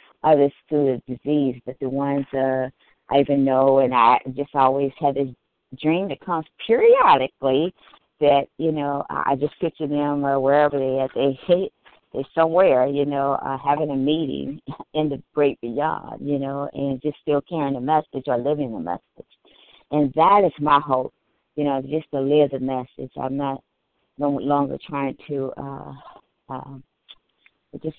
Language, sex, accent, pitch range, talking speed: English, female, American, 135-160 Hz, 170 wpm